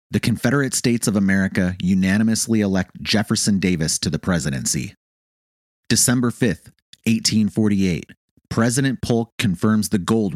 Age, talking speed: 30-49, 115 wpm